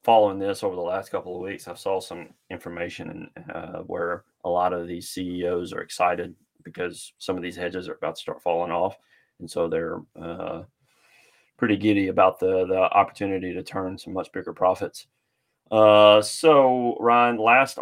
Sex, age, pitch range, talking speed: male, 30-49, 95-110 Hz, 175 wpm